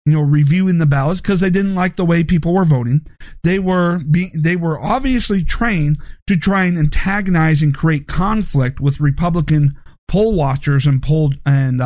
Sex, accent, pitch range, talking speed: male, American, 145-190 Hz, 175 wpm